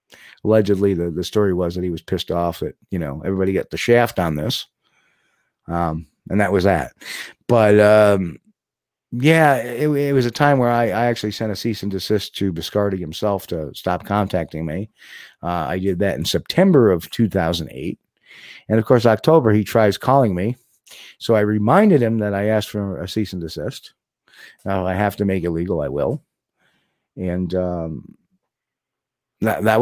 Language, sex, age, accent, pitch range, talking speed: English, male, 50-69, American, 90-115 Hz, 180 wpm